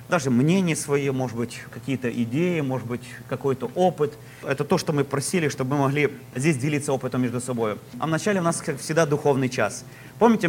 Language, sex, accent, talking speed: Russian, male, native, 190 wpm